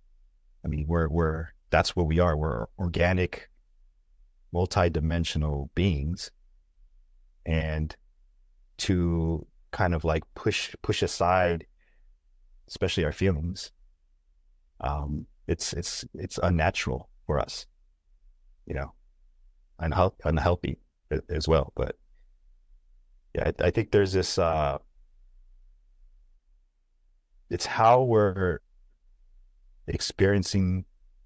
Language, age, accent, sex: English, 30-49, American, male